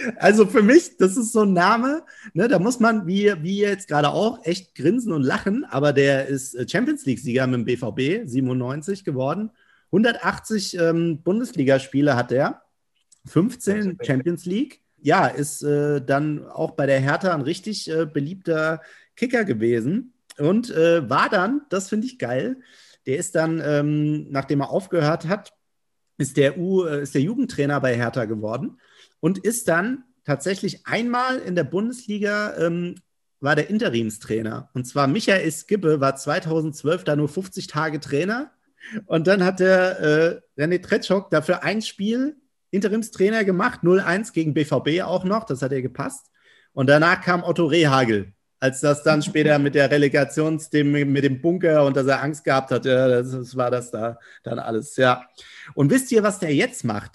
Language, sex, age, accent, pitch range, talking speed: German, male, 40-59, German, 140-200 Hz, 165 wpm